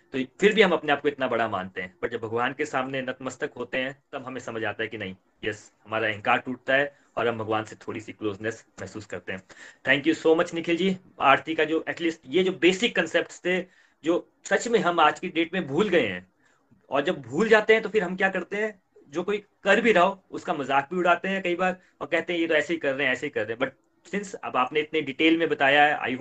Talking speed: 235 wpm